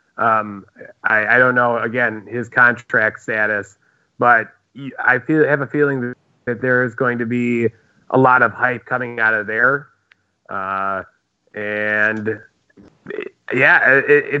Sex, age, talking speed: male, 30-49, 145 wpm